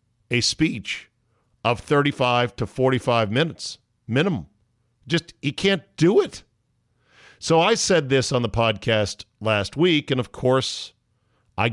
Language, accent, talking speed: English, American, 135 wpm